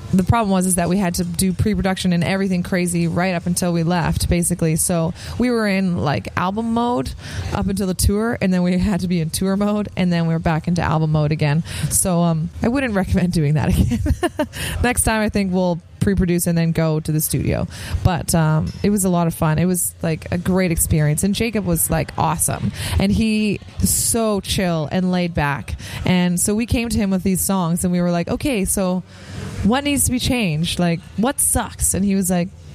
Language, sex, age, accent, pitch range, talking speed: English, female, 20-39, American, 165-220 Hz, 225 wpm